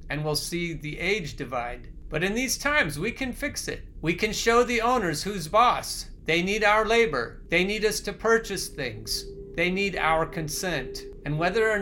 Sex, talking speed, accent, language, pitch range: male, 195 wpm, American, English, 145-185 Hz